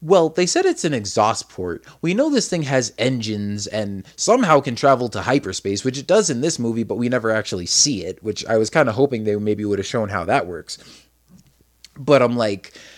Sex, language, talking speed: male, English, 220 wpm